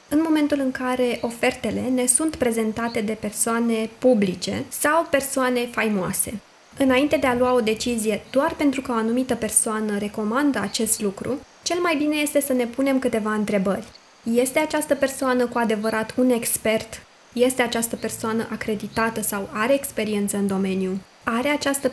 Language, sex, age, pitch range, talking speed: Romanian, female, 20-39, 220-270 Hz, 155 wpm